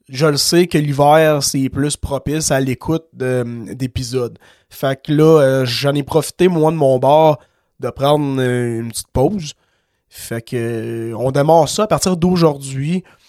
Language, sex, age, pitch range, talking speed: French, male, 20-39, 130-155 Hz, 170 wpm